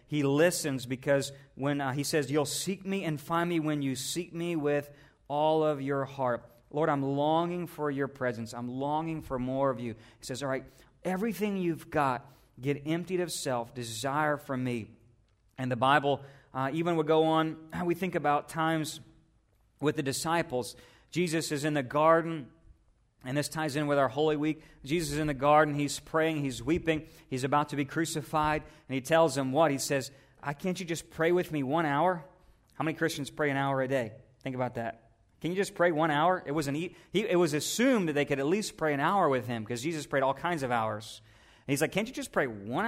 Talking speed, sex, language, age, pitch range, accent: 220 wpm, male, English, 40-59, 130-165 Hz, American